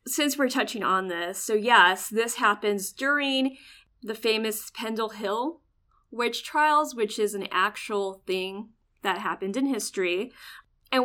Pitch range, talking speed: 195-255 Hz, 140 wpm